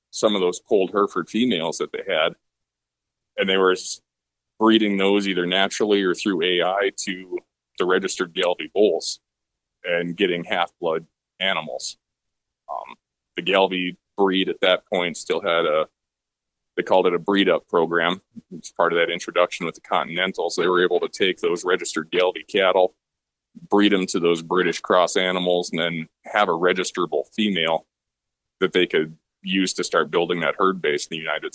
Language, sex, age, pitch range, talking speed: English, male, 20-39, 85-100 Hz, 170 wpm